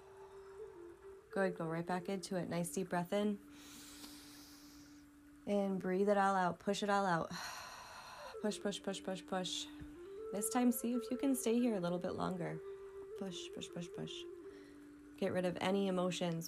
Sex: female